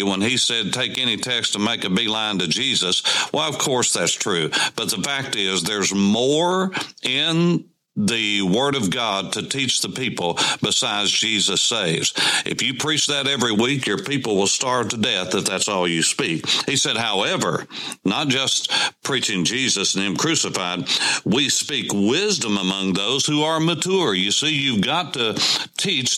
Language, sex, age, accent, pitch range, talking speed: English, male, 60-79, American, 95-150 Hz, 175 wpm